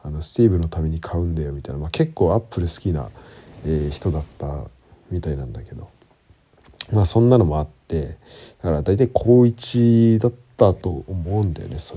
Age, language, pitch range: 40-59, Japanese, 80-115 Hz